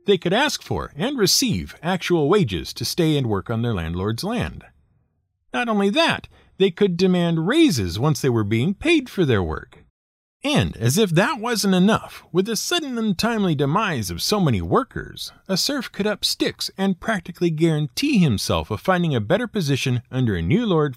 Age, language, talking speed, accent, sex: 50-69, English, 185 wpm, American, male